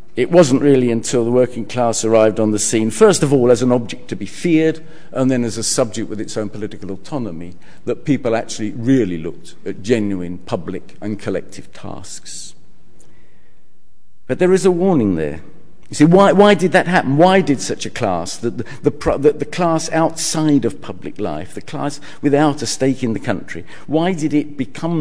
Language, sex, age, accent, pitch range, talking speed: English, male, 50-69, British, 105-145 Hz, 190 wpm